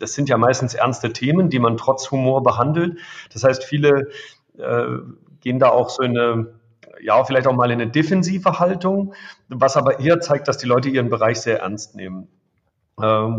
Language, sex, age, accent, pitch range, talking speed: German, male, 40-59, German, 115-150 Hz, 185 wpm